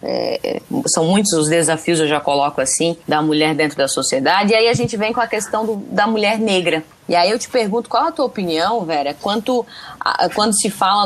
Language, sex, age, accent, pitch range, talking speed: Portuguese, female, 20-39, Brazilian, 175-245 Hz, 220 wpm